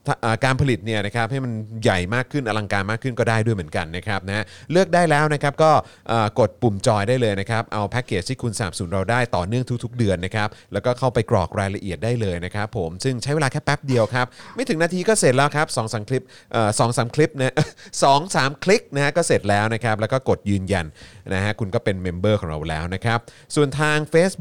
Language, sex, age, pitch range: Thai, male, 30-49, 100-135 Hz